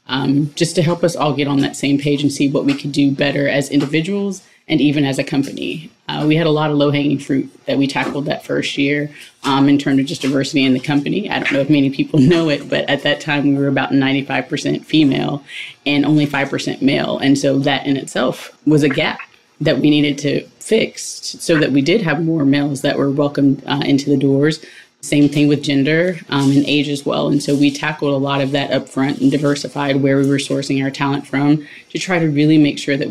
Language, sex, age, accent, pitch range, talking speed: English, female, 20-39, American, 140-150 Hz, 240 wpm